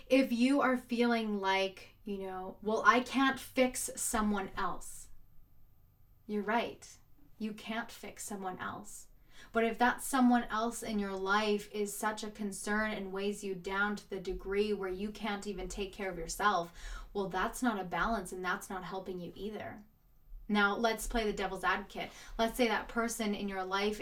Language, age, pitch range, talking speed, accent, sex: English, 20-39, 190-225 Hz, 175 wpm, American, female